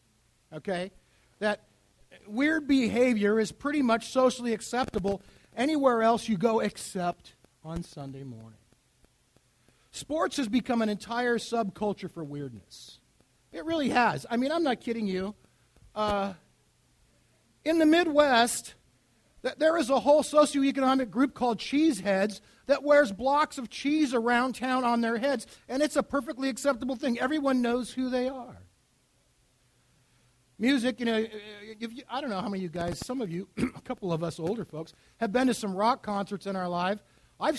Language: English